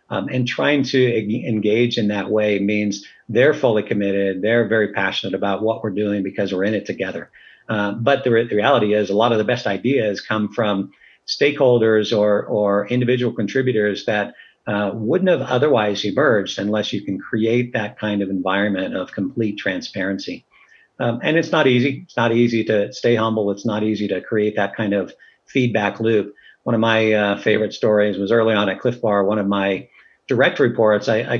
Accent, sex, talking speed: American, male, 190 wpm